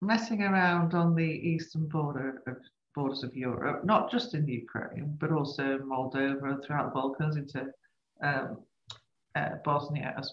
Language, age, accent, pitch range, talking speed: English, 40-59, British, 145-240 Hz, 150 wpm